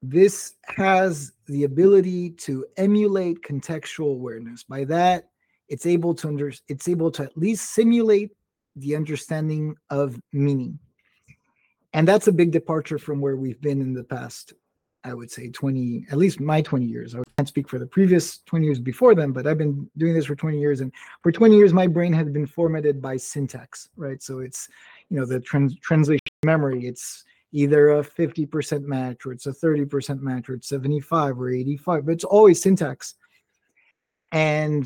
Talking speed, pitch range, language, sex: 175 wpm, 140-175 Hz, English, male